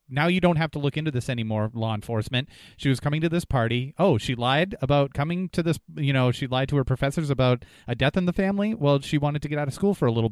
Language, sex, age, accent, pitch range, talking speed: English, male, 30-49, American, 115-150 Hz, 280 wpm